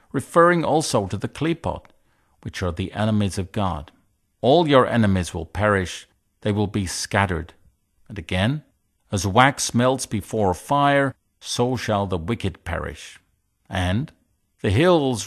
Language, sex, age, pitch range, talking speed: English, male, 50-69, 100-135 Hz, 140 wpm